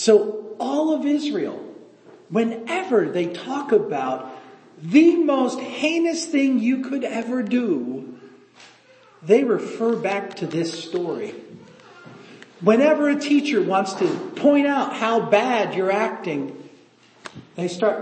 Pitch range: 200-305 Hz